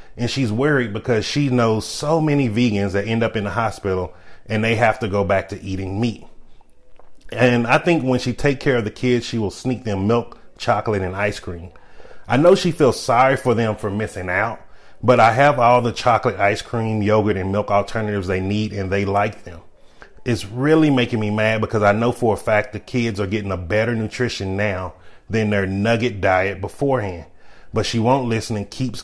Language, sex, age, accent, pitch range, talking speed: English, male, 30-49, American, 100-125 Hz, 210 wpm